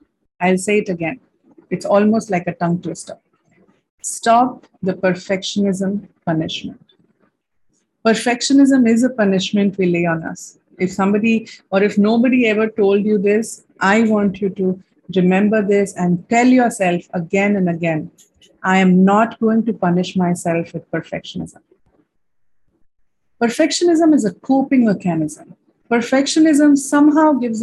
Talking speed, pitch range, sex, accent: 130 wpm, 190-250 Hz, female, Indian